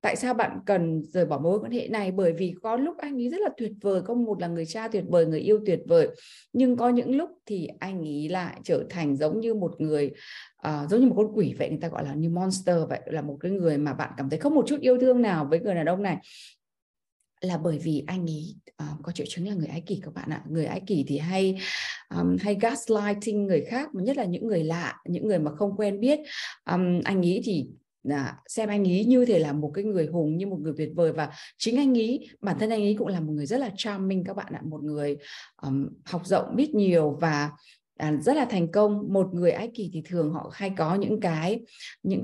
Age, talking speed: 20-39, 255 wpm